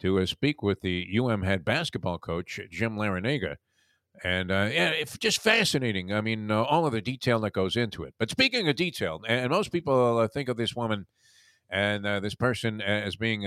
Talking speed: 200 wpm